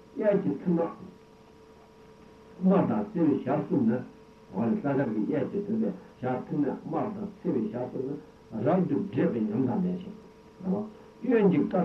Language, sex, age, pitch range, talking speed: Italian, male, 60-79, 165-210 Hz, 50 wpm